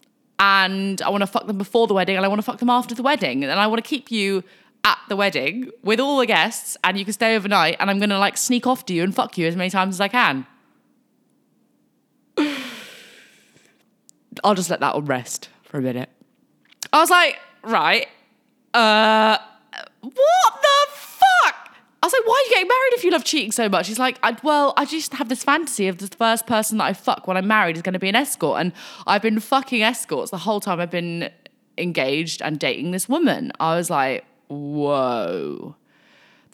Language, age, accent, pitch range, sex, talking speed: English, 10-29, British, 190-255 Hz, female, 205 wpm